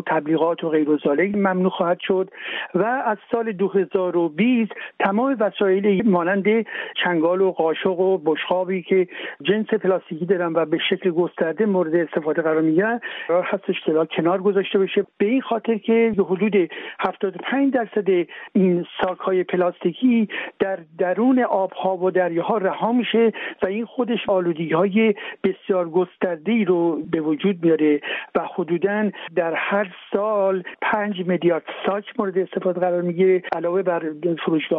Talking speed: 135 wpm